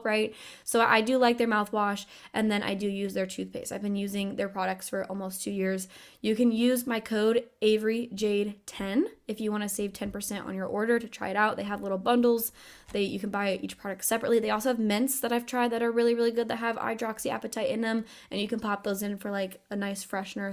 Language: English